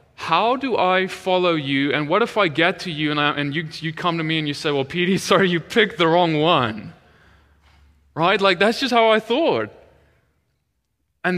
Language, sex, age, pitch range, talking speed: English, male, 20-39, 160-200 Hz, 200 wpm